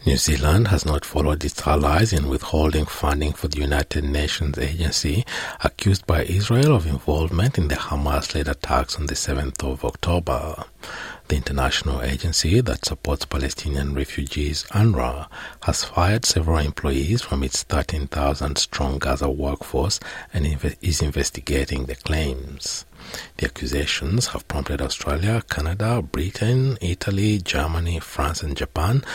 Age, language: 60-79, English